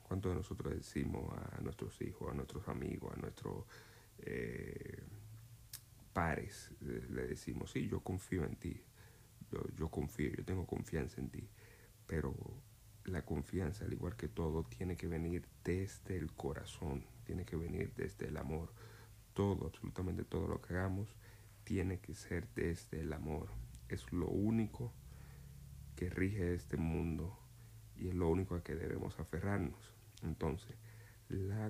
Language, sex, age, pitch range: Spanish, male, 50-69, 85-110 Hz